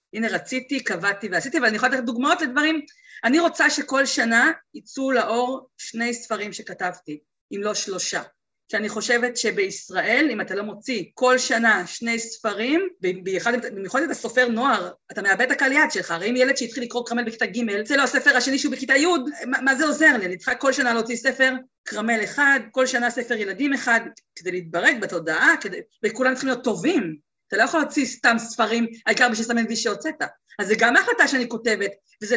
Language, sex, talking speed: Hebrew, female, 190 wpm